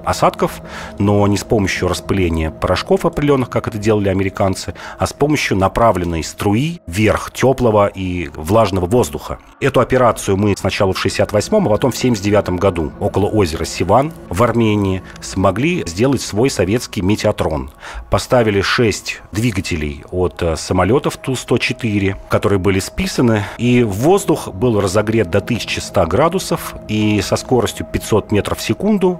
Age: 40-59